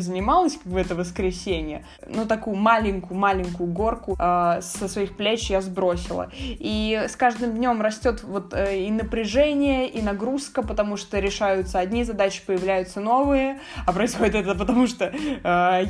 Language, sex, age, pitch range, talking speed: Russian, female, 20-39, 190-230 Hz, 155 wpm